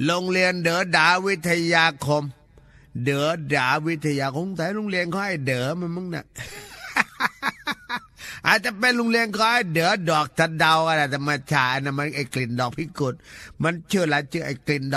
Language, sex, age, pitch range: Thai, male, 30-49, 140-205 Hz